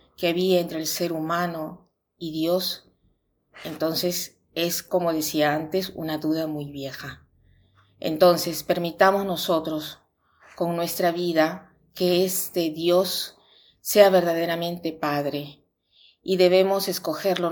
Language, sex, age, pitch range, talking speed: Spanish, female, 40-59, 160-180 Hz, 110 wpm